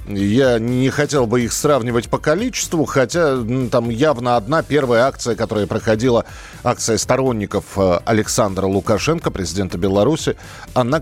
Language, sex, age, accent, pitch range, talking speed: Russian, male, 40-59, native, 95-135 Hz, 125 wpm